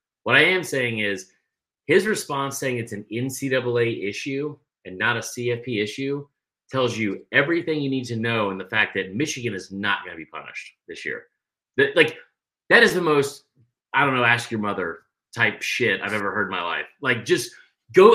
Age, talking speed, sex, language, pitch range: 30-49, 195 wpm, male, English, 120-150 Hz